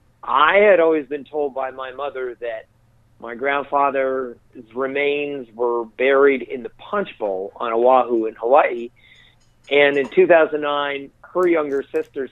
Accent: American